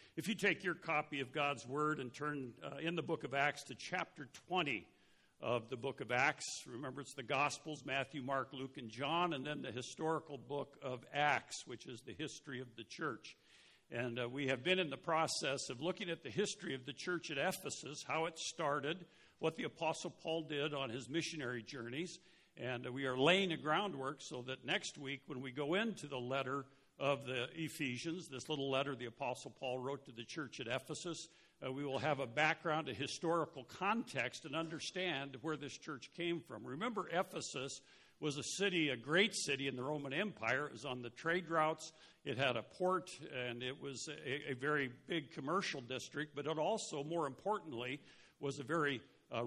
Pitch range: 135-165 Hz